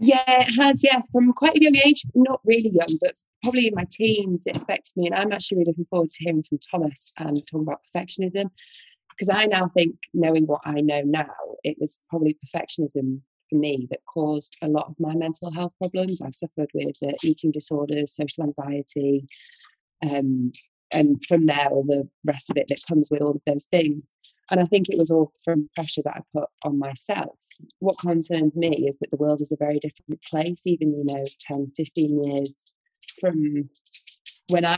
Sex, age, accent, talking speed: female, 20-39, British, 195 wpm